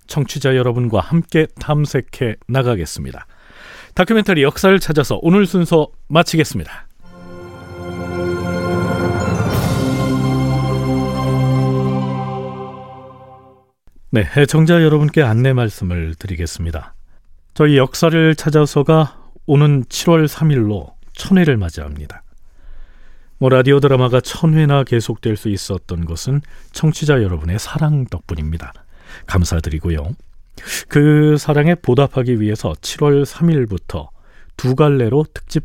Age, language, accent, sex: 40-59, Korean, native, male